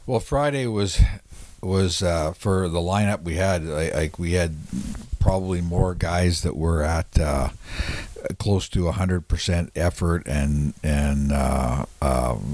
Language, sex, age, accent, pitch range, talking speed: English, male, 60-79, American, 75-90 Hz, 145 wpm